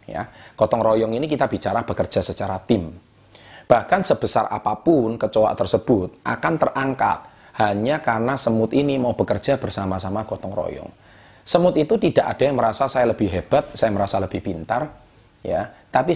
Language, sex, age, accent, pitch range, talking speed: Indonesian, male, 30-49, native, 100-145 Hz, 150 wpm